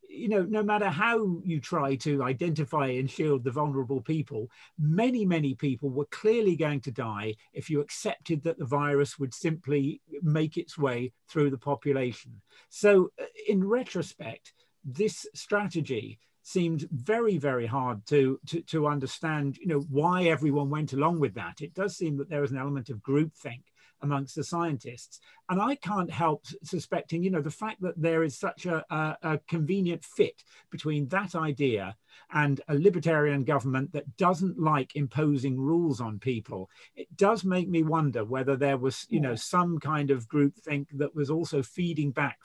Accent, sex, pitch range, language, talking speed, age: British, male, 140-170 Hz, English, 170 wpm, 40-59